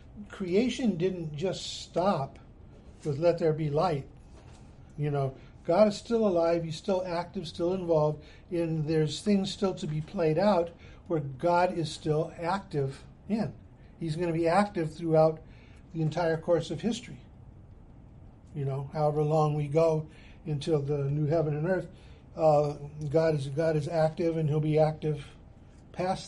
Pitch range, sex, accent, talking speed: 145-175 Hz, male, American, 155 wpm